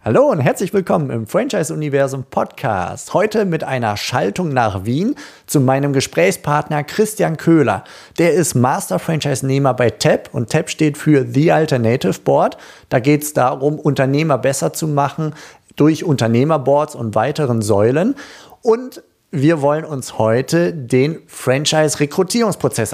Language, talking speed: German, 135 wpm